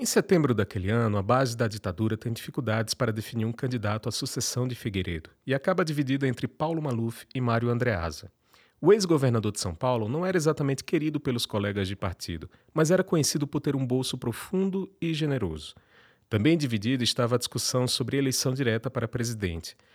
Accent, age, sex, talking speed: Brazilian, 40-59, male, 180 wpm